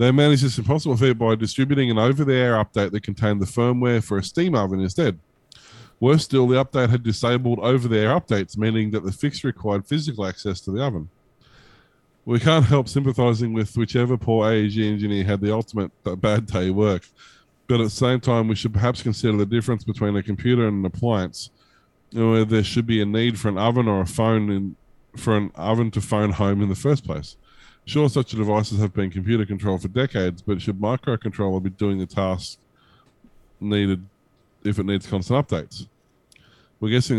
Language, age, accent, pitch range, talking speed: English, 20-39, Australian, 95-120 Hz, 190 wpm